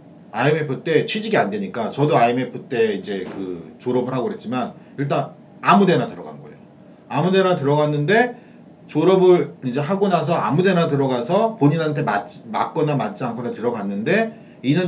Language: Korean